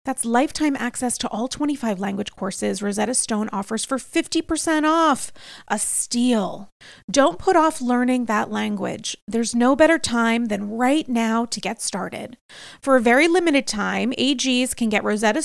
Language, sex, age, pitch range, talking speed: English, female, 30-49, 225-285 Hz, 160 wpm